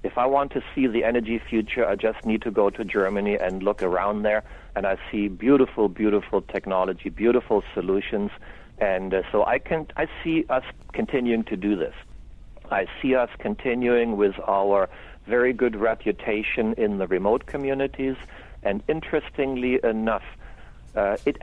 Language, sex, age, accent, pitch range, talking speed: English, male, 60-79, German, 105-130 Hz, 160 wpm